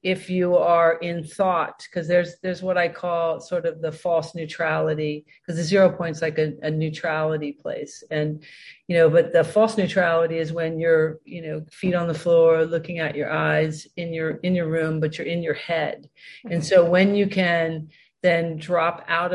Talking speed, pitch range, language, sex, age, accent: 195 wpm, 160-180 Hz, English, female, 50-69, American